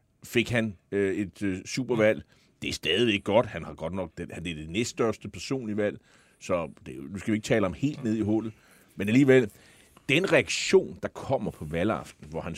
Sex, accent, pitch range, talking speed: male, native, 105-125 Hz, 205 wpm